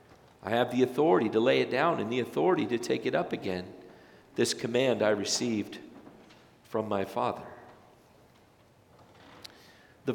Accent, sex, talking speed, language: American, male, 140 wpm, English